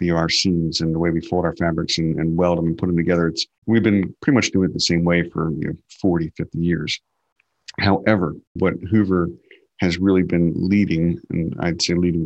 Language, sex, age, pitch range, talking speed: English, male, 50-69, 85-90 Hz, 205 wpm